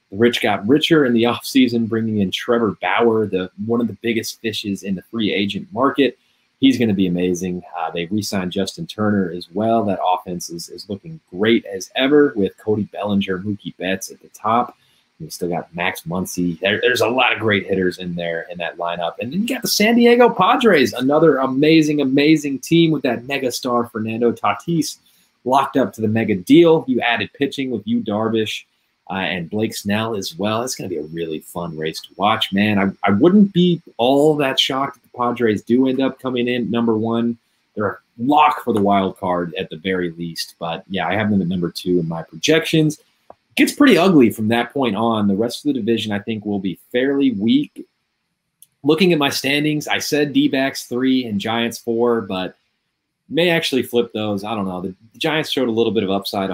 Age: 30-49